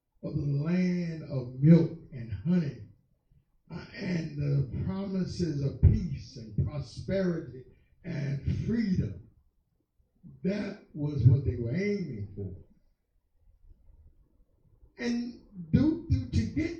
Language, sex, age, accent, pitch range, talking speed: English, male, 50-69, American, 110-170 Hz, 100 wpm